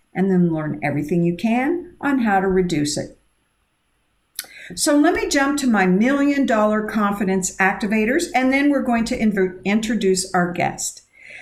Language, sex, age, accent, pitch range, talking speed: English, female, 50-69, American, 185-255 Hz, 150 wpm